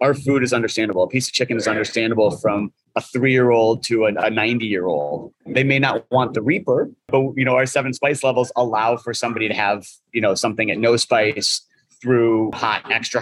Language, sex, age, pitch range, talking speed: English, male, 30-49, 105-120 Hz, 200 wpm